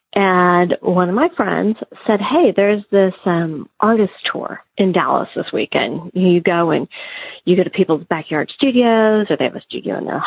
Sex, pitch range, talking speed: female, 175-215 Hz, 185 wpm